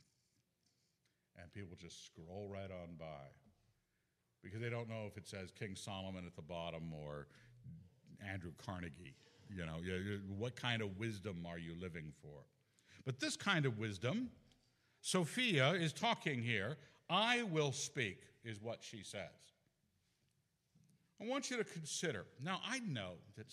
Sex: male